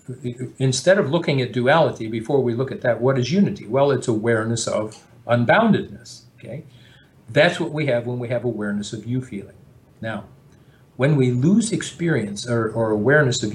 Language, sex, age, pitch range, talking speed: English, male, 50-69, 115-145 Hz, 175 wpm